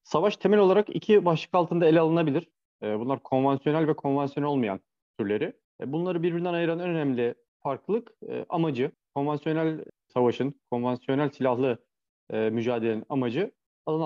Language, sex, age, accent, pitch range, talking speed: Turkish, male, 40-59, native, 115-160 Hz, 120 wpm